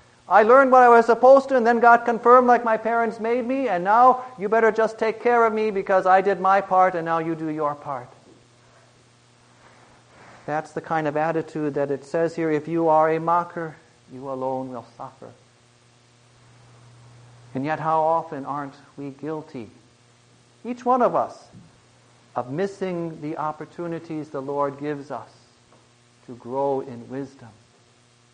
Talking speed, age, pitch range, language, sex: 165 wpm, 50-69, 140-195 Hz, English, male